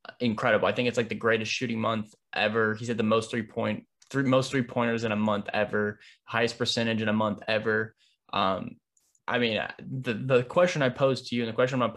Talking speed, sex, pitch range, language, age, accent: 225 wpm, male, 110-130 Hz, English, 10-29, American